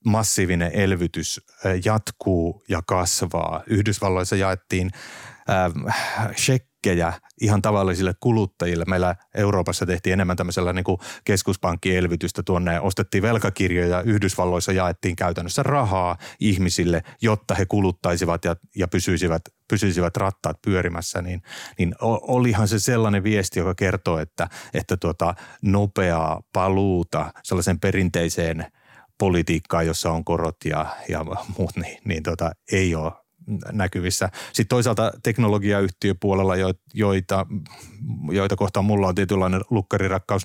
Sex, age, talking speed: male, 30-49, 115 wpm